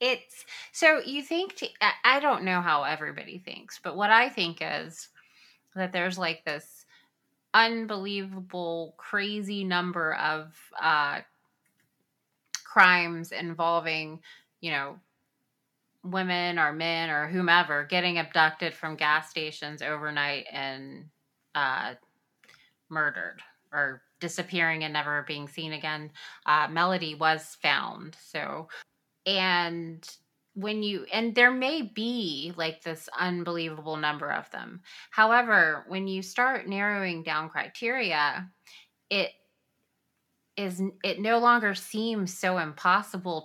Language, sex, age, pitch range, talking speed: English, female, 20-39, 155-195 Hz, 115 wpm